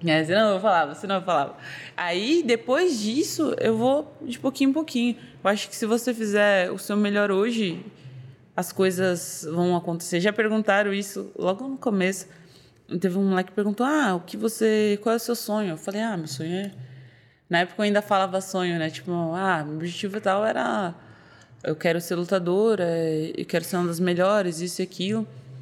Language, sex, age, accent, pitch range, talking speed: Portuguese, female, 20-39, Brazilian, 175-230 Hz, 195 wpm